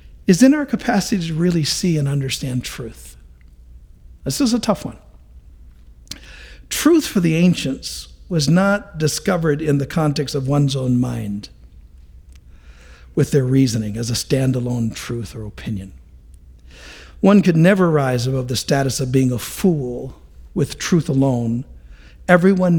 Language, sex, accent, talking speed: English, male, American, 140 wpm